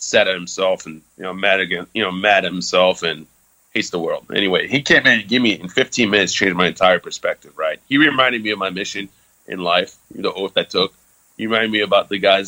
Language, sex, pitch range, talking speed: English, male, 100-130 Hz, 240 wpm